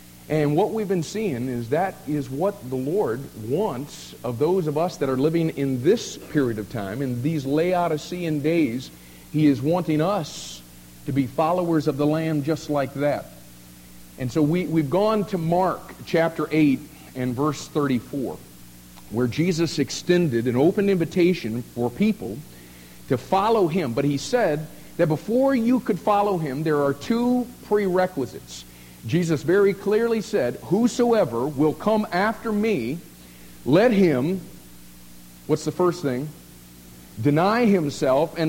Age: 50-69